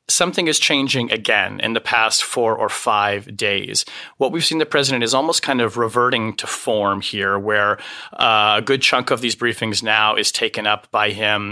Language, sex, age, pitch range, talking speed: English, male, 30-49, 105-125 Hz, 195 wpm